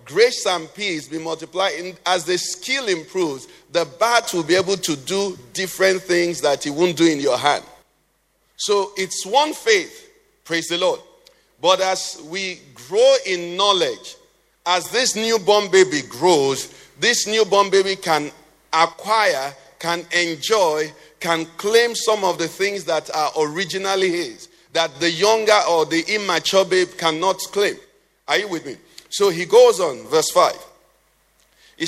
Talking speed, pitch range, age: 150 wpm, 165-240 Hz, 50-69